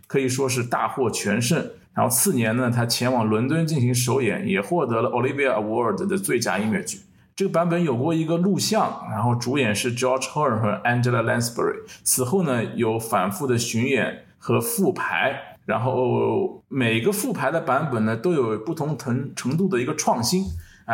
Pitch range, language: 120-155 Hz, Chinese